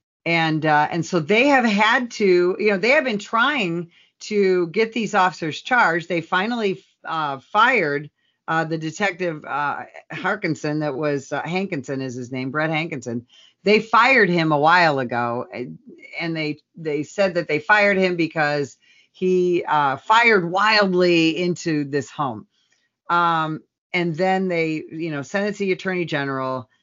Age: 50-69